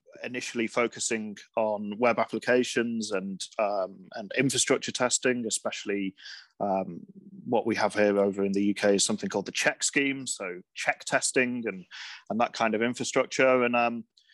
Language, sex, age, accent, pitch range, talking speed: English, male, 30-49, British, 110-140 Hz, 155 wpm